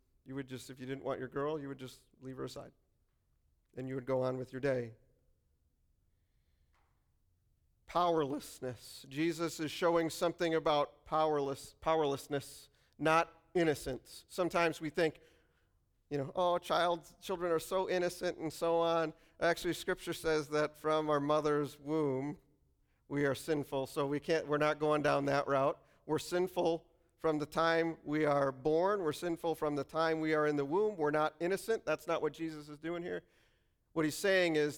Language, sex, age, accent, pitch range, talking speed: English, male, 40-59, American, 130-160 Hz, 170 wpm